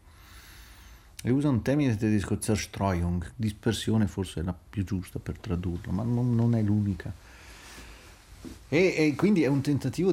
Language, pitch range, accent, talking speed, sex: Italian, 90-110 Hz, native, 140 wpm, male